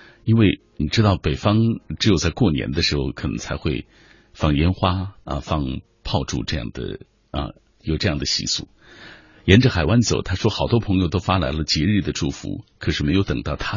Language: Chinese